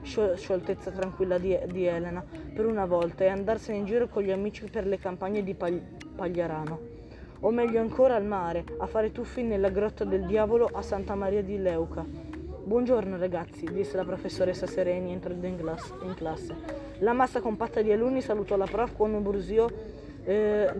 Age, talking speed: 20-39, 160 wpm